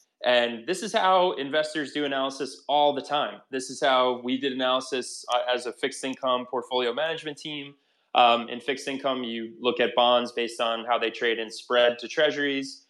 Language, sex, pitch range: English, male, 120-140 Hz